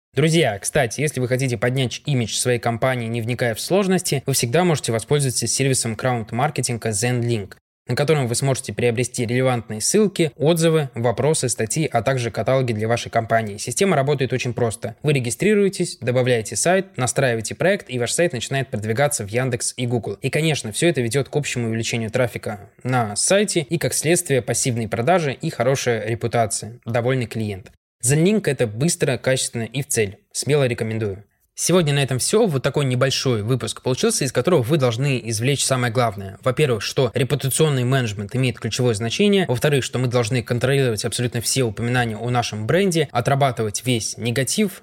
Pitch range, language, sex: 115-145 Hz, Russian, male